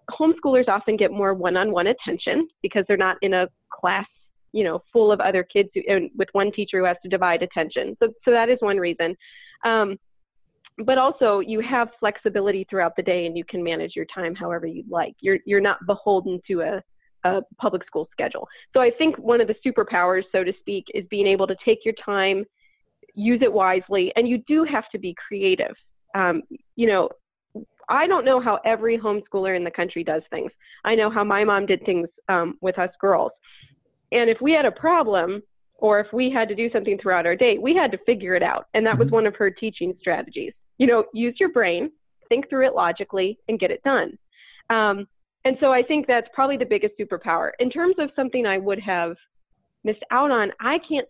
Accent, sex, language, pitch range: American, female, English, 190-240 Hz